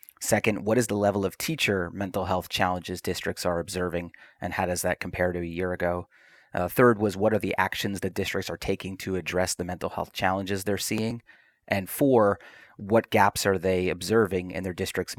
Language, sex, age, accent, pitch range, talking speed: English, male, 30-49, American, 90-105 Hz, 200 wpm